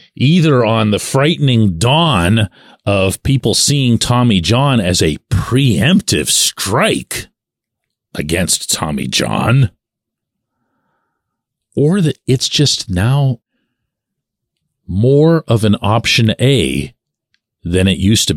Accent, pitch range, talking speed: American, 95-135 Hz, 100 wpm